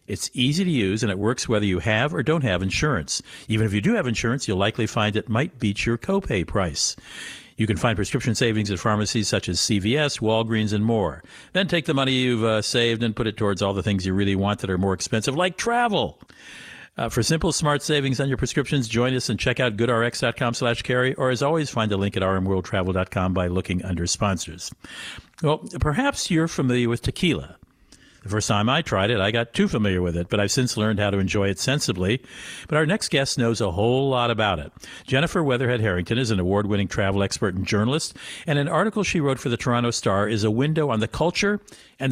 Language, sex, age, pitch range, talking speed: English, male, 50-69, 105-135 Hz, 220 wpm